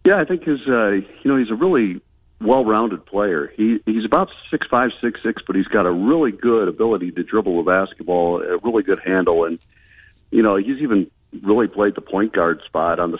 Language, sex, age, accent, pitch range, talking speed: English, male, 50-69, American, 90-100 Hz, 215 wpm